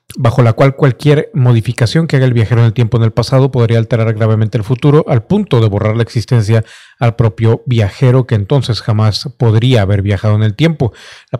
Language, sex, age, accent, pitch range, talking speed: Spanish, male, 40-59, Mexican, 115-130 Hz, 205 wpm